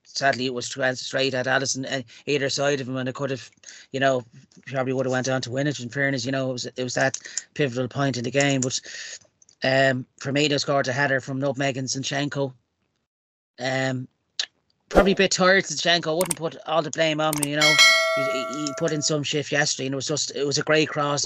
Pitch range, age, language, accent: 130-145 Hz, 30-49, English, Irish